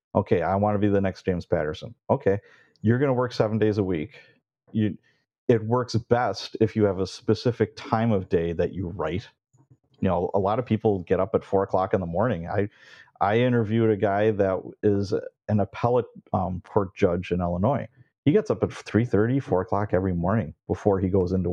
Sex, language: male, English